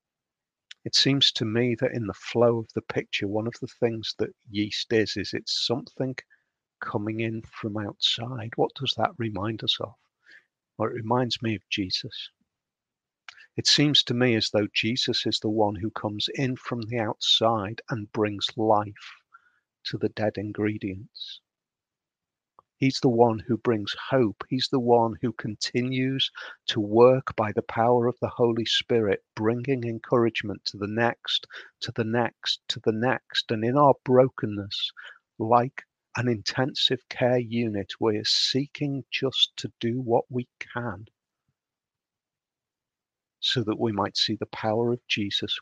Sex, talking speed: male, 155 wpm